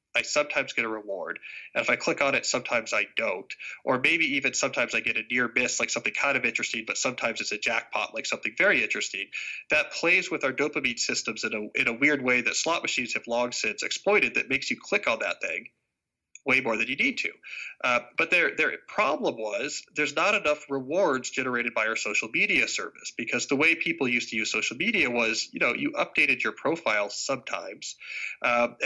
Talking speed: 215 wpm